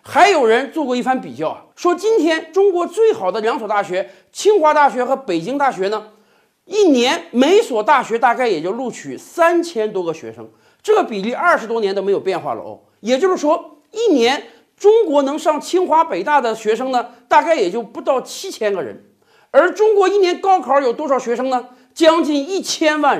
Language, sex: Chinese, male